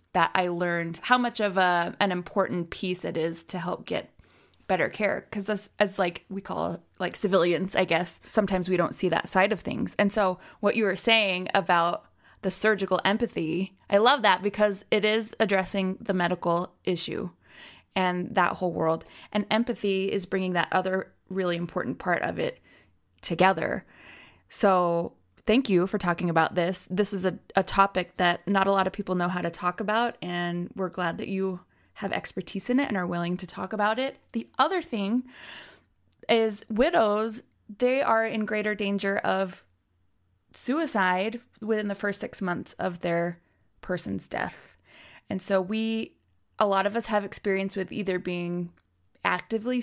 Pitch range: 180-215 Hz